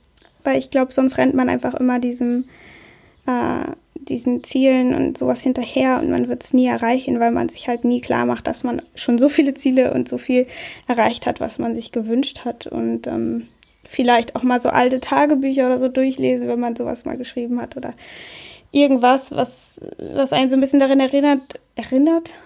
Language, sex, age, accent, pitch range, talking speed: German, female, 10-29, German, 225-265 Hz, 190 wpm